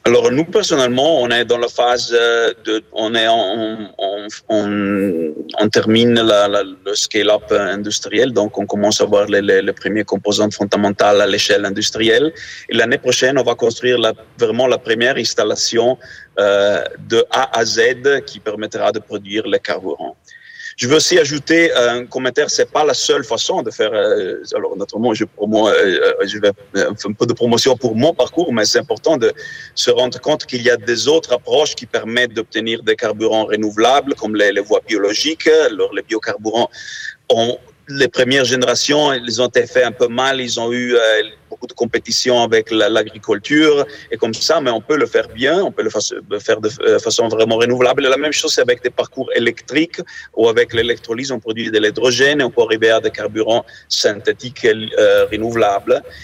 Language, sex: French, male